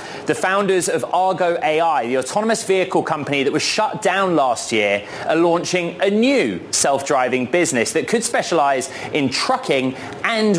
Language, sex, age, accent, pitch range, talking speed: English, male, 30-49, British, 140-180 Hz, 155 wpm